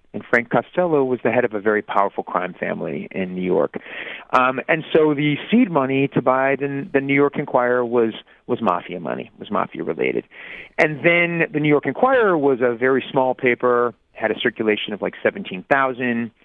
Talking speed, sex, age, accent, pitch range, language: 185 wpm, male, 40-59, American, 105-135 Hz, English